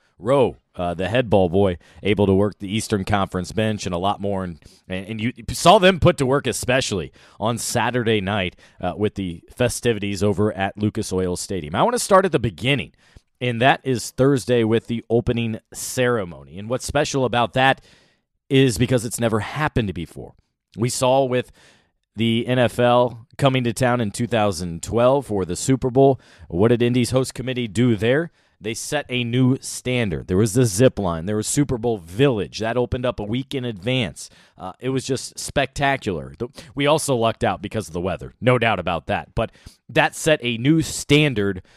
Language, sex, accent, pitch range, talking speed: English, male, American, 100-130 Hz, 185 wpm